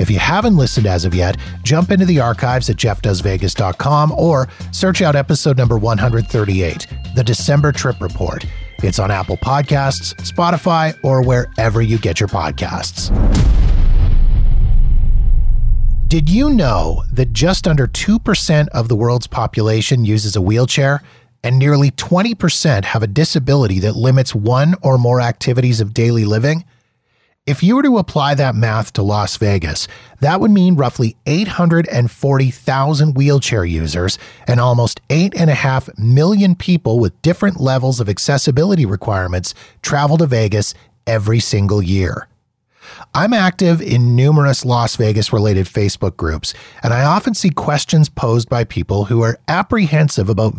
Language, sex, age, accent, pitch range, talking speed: English, male, 30-49, American, 105-150 Hz, 145 wpm